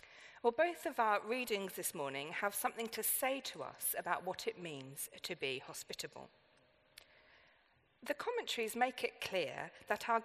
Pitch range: 215-295 Hz